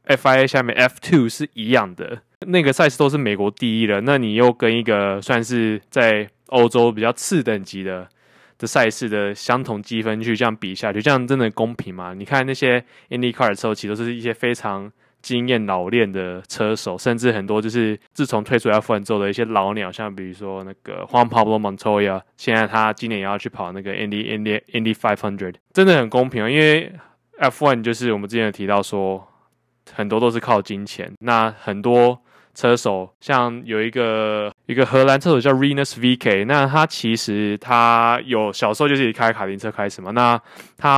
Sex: male